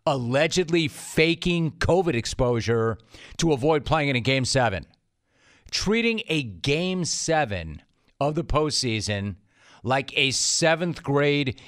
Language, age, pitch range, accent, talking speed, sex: English, 40-59, 115-155 Hz, American, 115 wpm, male